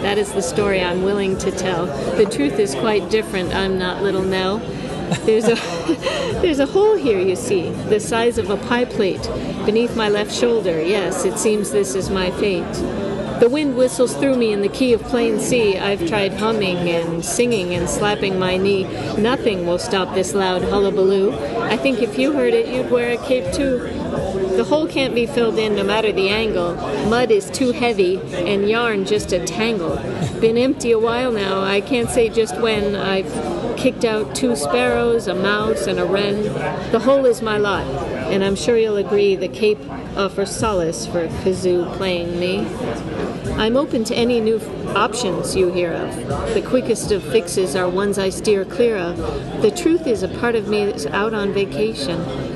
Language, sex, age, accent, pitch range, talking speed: English, female, 50-69, American, 190-235 Hz, 190 wpm